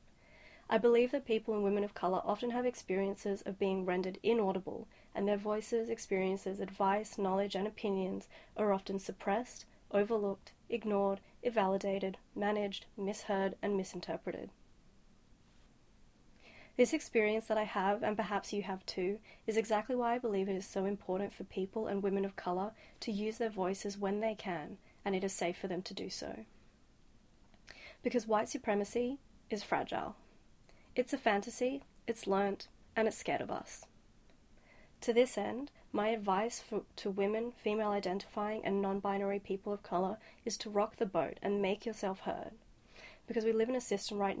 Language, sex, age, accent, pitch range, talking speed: English, female, 30-49, Australian, 195-225 Hz, 160 wpm